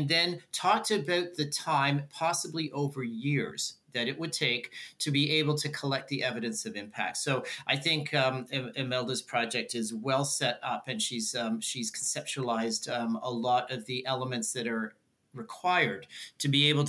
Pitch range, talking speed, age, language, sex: 125-155 Hz, 170 wpm, 40-59, English, male